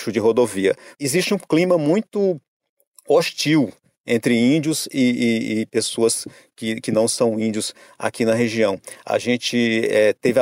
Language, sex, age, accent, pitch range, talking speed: Portuguese, male, 40-59, Brazilian, 110-160 Hz, 140 wpm